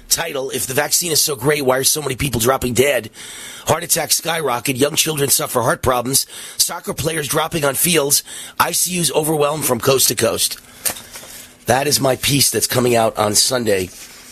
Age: 30-49